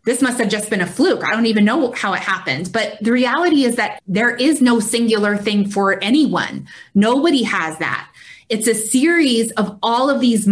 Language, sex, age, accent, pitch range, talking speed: English, female, 20-39, American, 205-250 Hz, 205 wpm